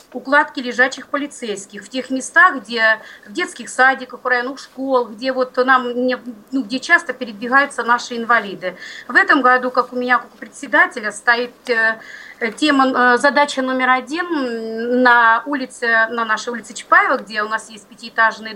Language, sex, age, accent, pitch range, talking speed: Russian, female, 30-49, native, 220-260 Hz, 150 wpm